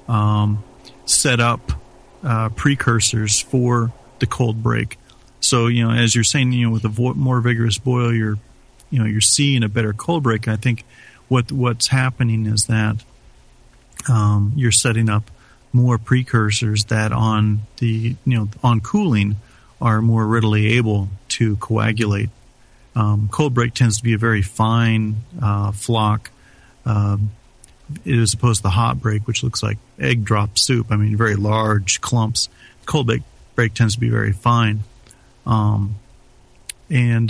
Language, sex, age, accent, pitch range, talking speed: English, male, 40-59, American, 110-125 Hz, 160 wpm